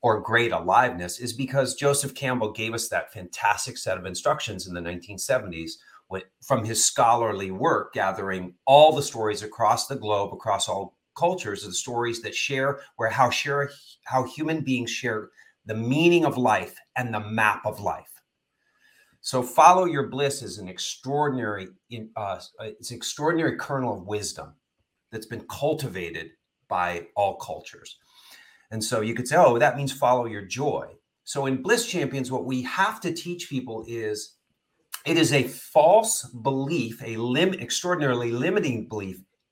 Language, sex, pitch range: English, male, 110-155 Hz